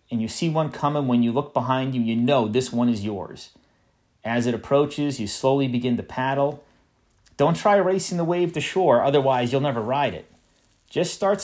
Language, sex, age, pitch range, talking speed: English, male, 30-49, 115-150 Hz, 200 wpm